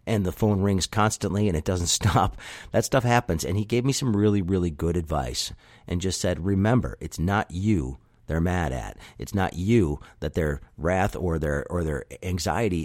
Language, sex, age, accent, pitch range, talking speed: English, male, 50-69, American, 90-115 Hz, 195 wpm